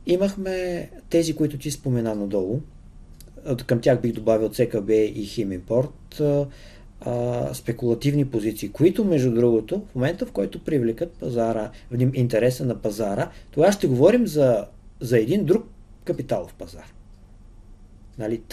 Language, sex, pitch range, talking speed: Bulgarian, male, 110-155 Hz, 125 wpm